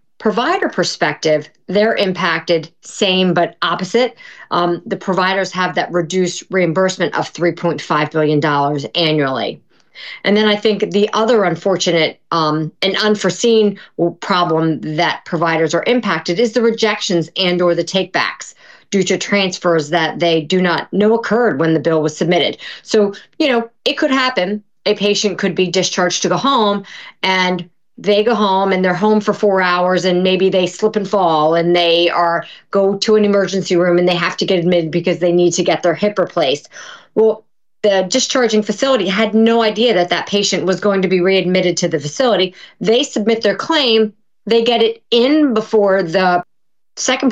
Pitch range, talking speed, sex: 175-220 Hz, 175 wpm, female